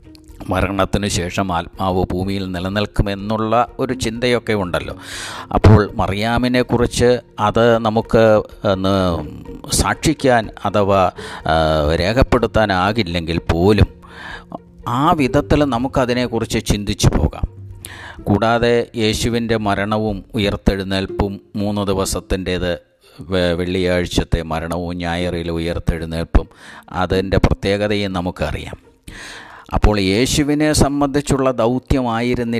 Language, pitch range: English, 90-115 Hz